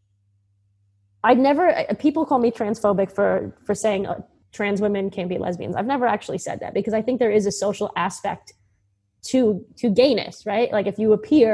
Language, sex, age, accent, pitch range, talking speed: English, female, 20-39, American, 190-230 Hz, 185 wpm